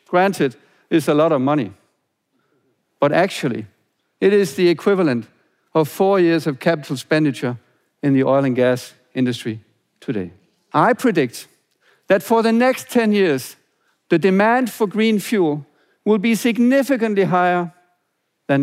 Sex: male